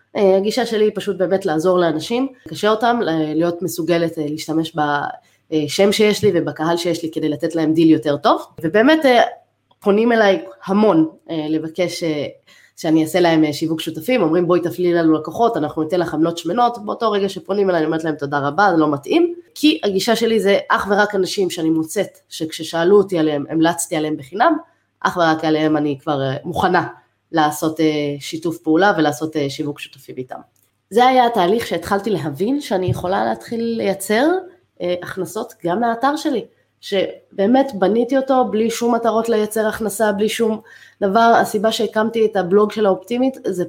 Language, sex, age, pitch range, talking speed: Hebrew, female, 20-39, 160-225 Hz, 160 wpm